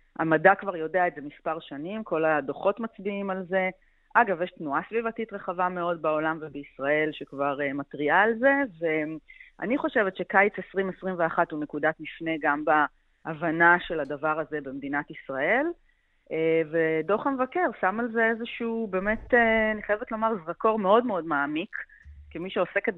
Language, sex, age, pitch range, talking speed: Hebrew, female, 30-49, 160-220 Hz, 140 wpm